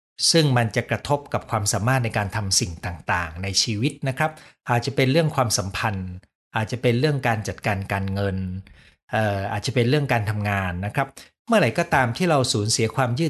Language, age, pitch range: Thai, 60-79, 105-140 Hz